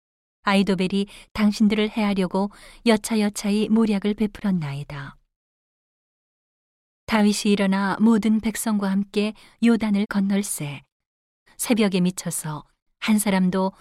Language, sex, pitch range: Korean, female, 170-210 Hz